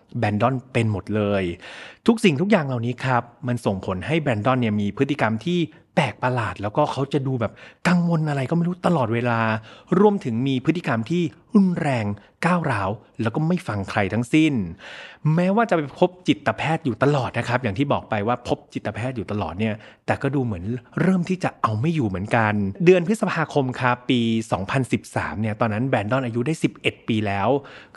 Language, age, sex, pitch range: Thai, 30-49, male, 115-165 Hz